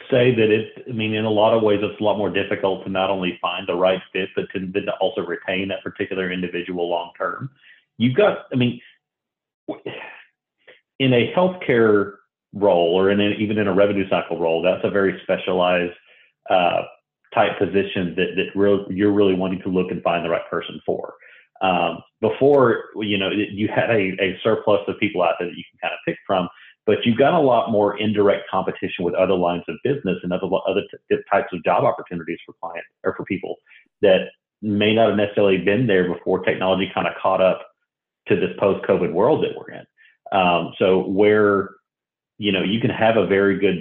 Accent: American